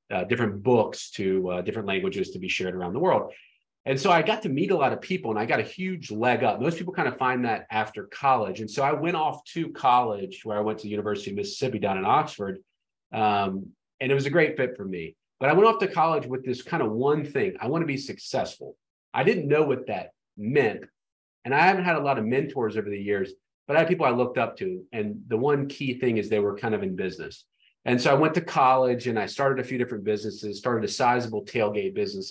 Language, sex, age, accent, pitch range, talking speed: English, male, 40-59, American, 105-165 Hz, 255 wpm